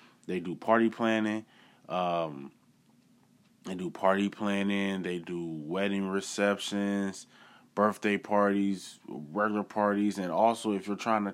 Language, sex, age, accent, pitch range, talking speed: English, male, 20-39, American, 95-120 Hz, 120 wpm